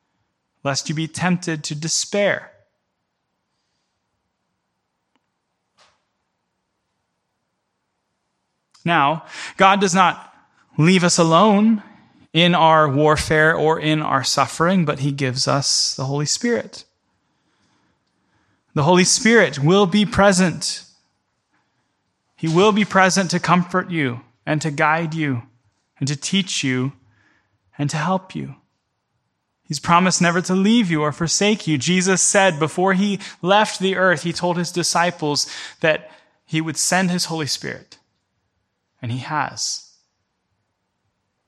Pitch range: 140-185 Hz